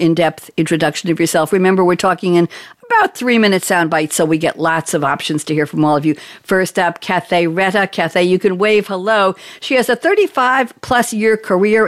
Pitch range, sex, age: 160-195 Hz, female, 60-79